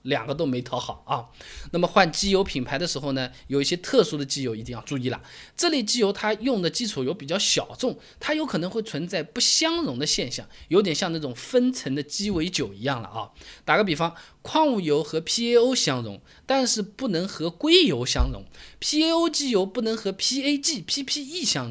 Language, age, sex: Chinese, 20-39, male